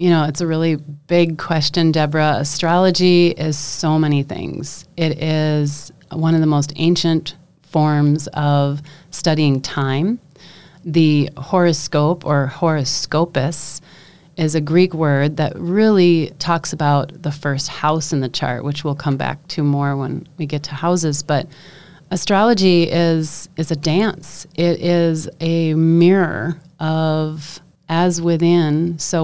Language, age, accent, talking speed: English, 30-49, American, 140 wpm